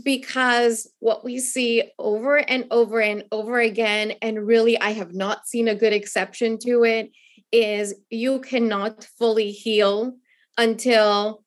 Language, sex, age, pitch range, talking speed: English, female, 20-39, 220-270 Hz, 140 wpm